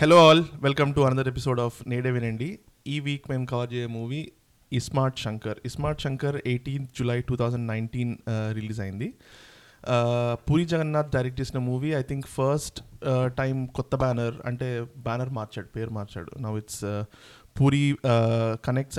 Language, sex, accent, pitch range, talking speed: Telugu, male, native, 115-135 Hz, 145 wpm